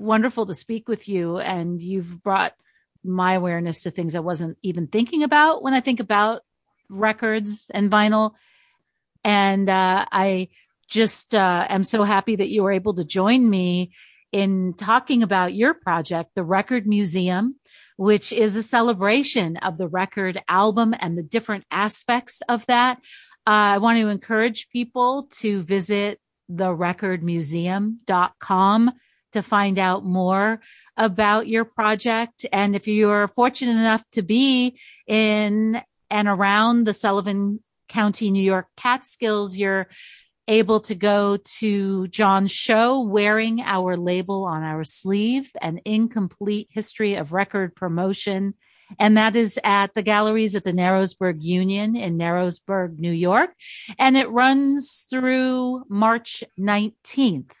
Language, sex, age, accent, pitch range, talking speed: English, female, 40-59, American, 190-225 Hz, 140 wpm